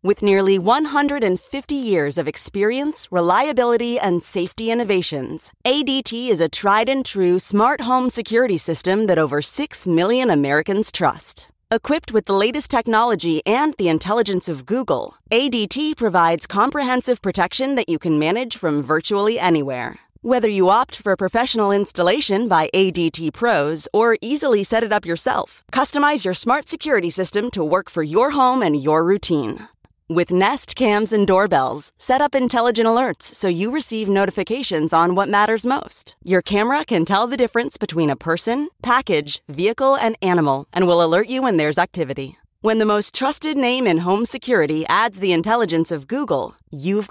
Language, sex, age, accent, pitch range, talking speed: English, female, 30-49, American, 175-240 Hz, 160 wpm